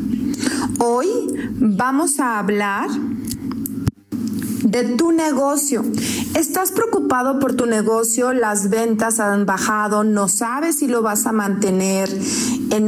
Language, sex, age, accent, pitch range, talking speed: Spanish, female, 40-59, Mexican, 235-280 Hz, 110 wpm